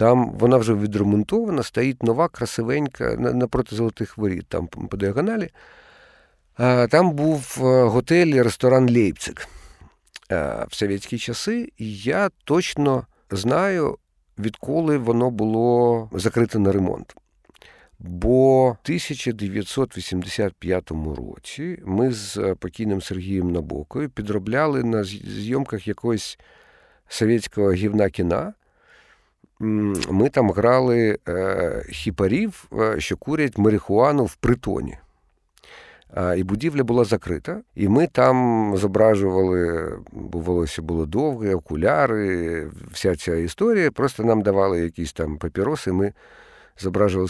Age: 50-69